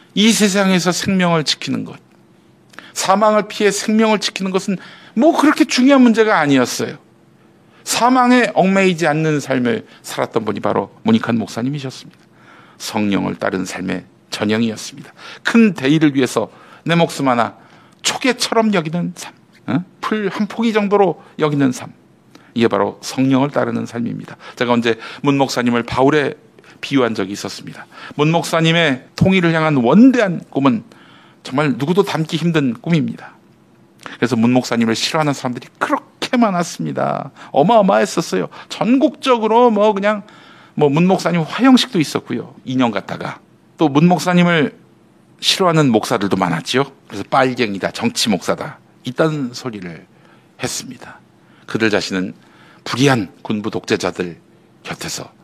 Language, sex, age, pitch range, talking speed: English, male, 50-69, 130-200 Hz, 110 wpm